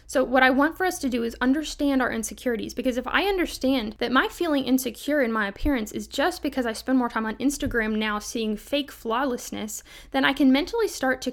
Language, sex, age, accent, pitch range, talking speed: English, female, 10-29, American, 225-265 Hz, 220 wpm